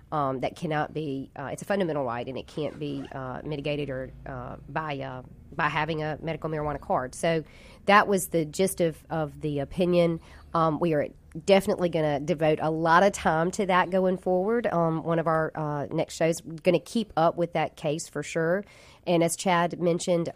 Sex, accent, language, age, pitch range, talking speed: female, American, English, 40-59, 145-180 Hz, 205 wpm